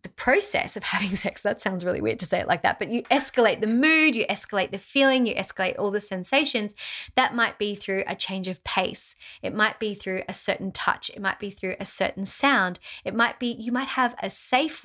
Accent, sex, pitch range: Australian, female, 190-240 Hz